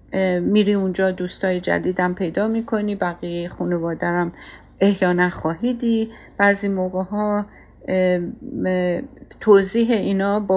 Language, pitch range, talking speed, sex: Persian, 180-220 Hz, 100 wpm, female